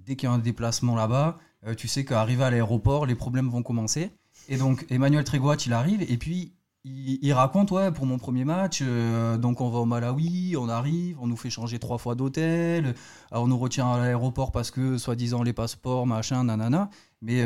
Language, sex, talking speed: French, male, 210 wpm